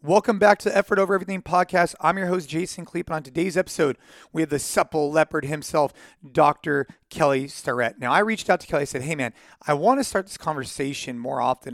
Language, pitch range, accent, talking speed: English, 135-180 Hz, American, 225 wpm